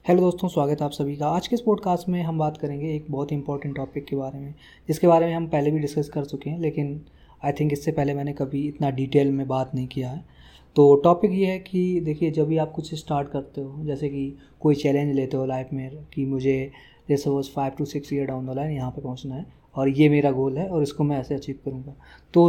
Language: Hindi